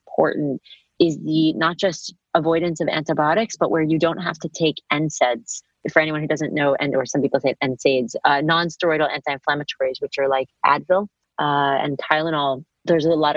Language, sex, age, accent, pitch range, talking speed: English, female, 30-49, American, 145-165 Hz, 180 wpm